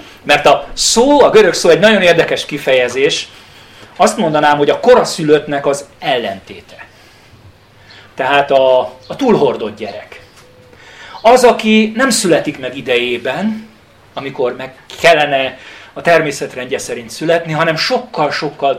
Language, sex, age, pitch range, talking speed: Hungarian, male, 40-59, 120-180 Hz, 120 wpm